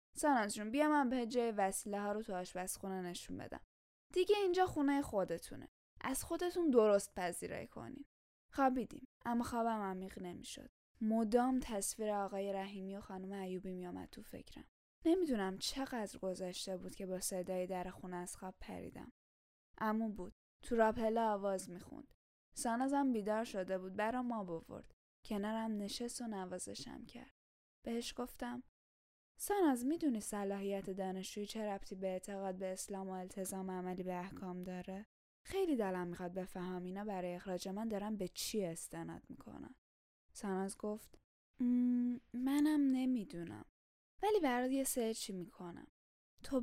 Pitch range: 185-245 Hz